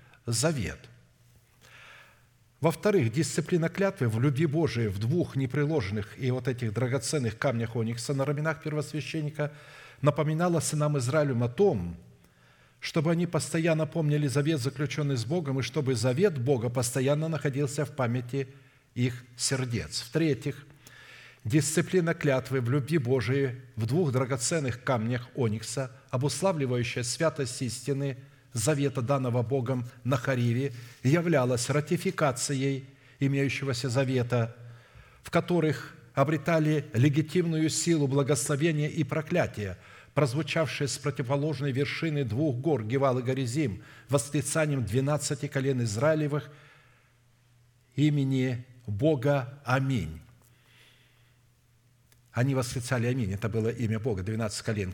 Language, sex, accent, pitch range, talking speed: Russian, male, native, 120-150 Hz, 105 wpm